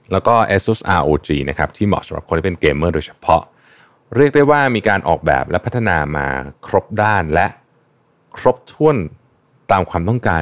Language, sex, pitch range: Thai, male, 80-120 Hz